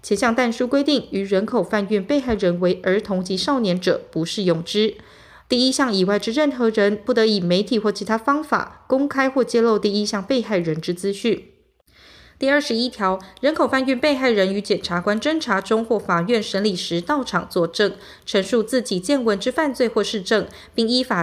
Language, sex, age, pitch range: Chinese, female, 20-39, 190-255 Hz